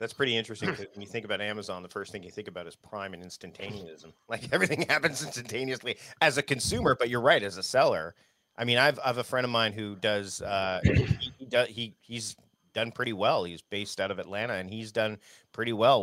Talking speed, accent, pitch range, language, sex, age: 220 wpm, American, 100-135 Hz, English, male, 40-59